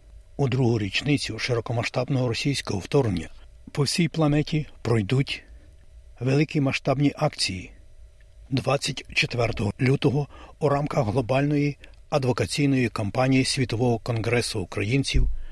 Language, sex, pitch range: Ukrainian, male, 100-135 Hz